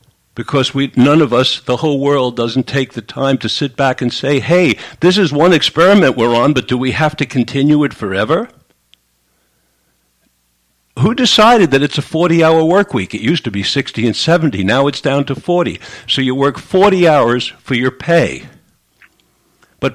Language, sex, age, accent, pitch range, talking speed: English, male, 60-79, American, 115-170 Hz, 185 wpm